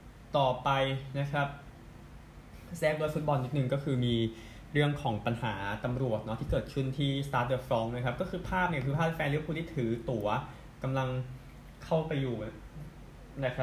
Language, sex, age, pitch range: Thai, male, 20-39, 120-145 Hz